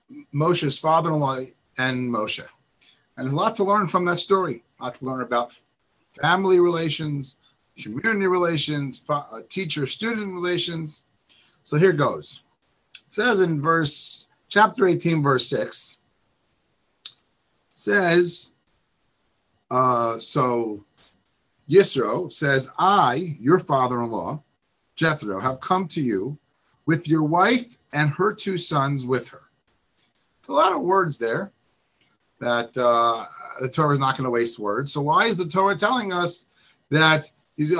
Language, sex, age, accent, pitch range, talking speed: English, male, 40-59, American, 130-175 Hz, 130 wpm